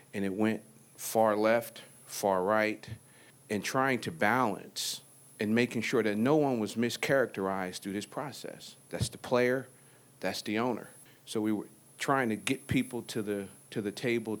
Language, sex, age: English, male, 40-59